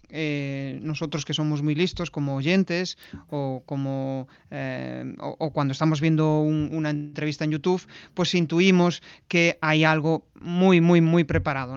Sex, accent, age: male, Spanish, 30-49